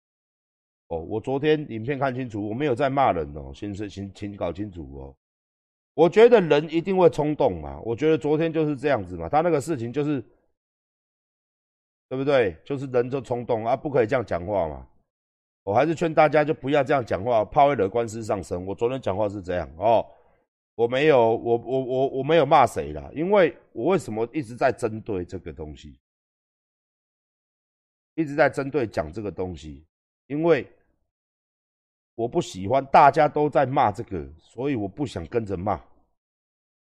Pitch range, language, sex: 90-150 Hz, Chinese, male